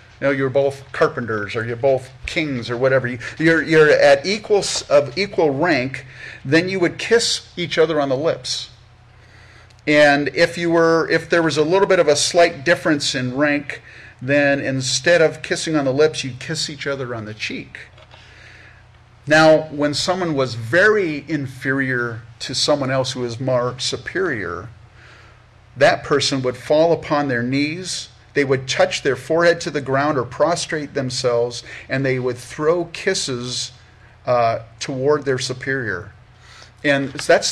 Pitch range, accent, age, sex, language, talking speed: 120-155 Hz, American, 50-69, male, English, 160 wpm